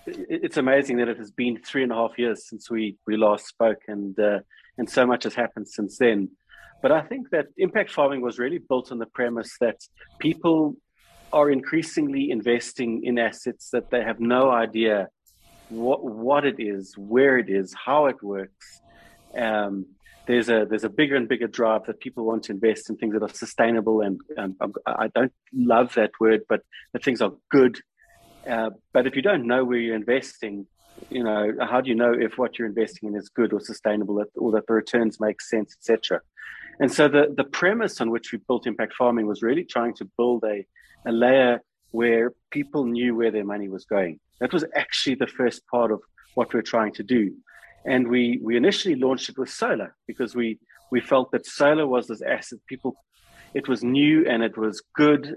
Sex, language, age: male, English, 30-49